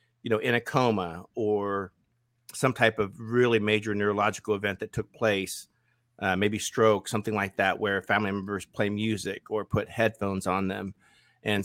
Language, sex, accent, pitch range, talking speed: English, male, American, 105-120 Hz, 170 wpm